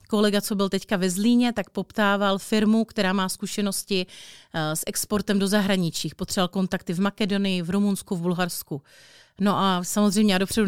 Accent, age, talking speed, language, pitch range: native, 30-49, 165 wpm, Czech, 180-215 Hz